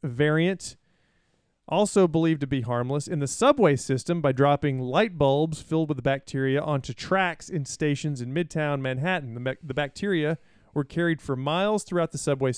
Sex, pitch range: male, 130-160 Hz